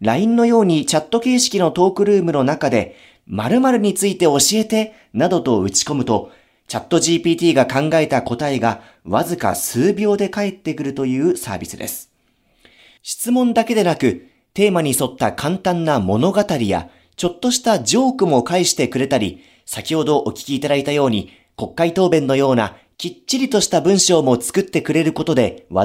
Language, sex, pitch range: Japanese, male, 130-190 Hz